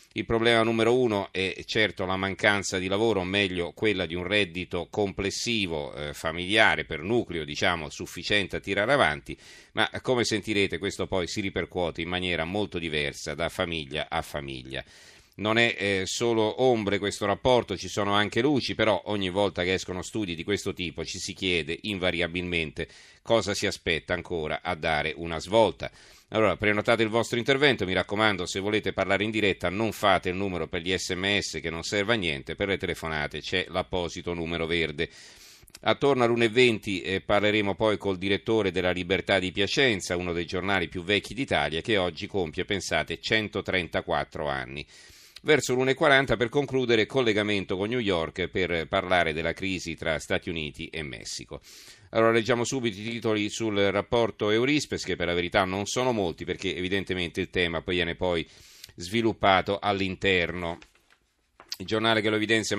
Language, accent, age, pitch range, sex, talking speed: Italian, native, 40-59, 90-110 Hz, male, 165 wpm